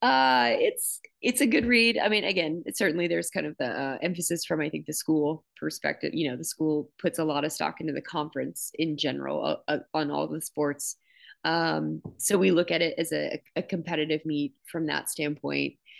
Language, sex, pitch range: English, female, 145-175 Hz